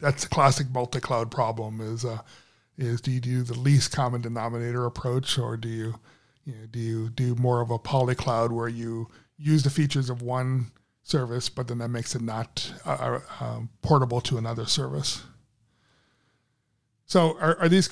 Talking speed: 180 wpm